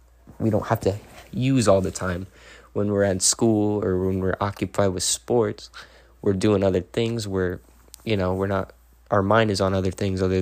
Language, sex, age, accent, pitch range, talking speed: English, male, 20-39, American, 90-100 Hz, 195 wpm